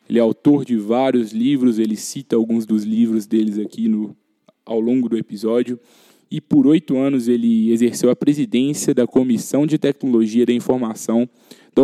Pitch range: 115-135 Hz